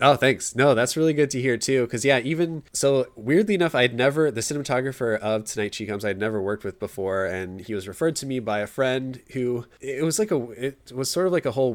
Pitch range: 100-120 Hz